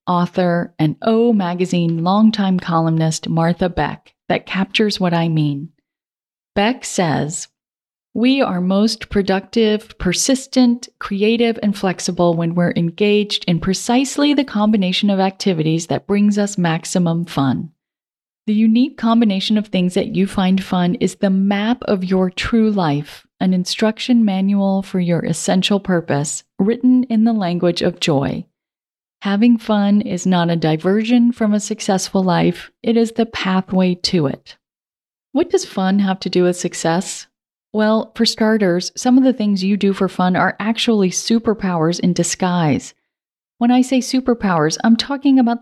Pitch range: 175-225 Hz